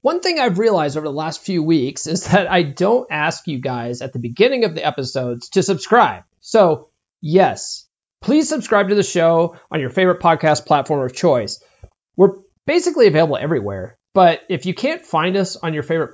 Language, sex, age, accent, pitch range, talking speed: English, male, 30-49, American, 150-205 Hz, 190 wpm